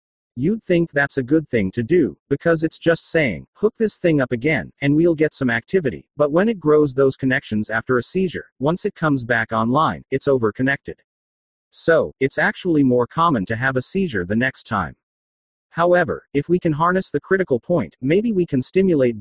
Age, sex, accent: 40-59, male, American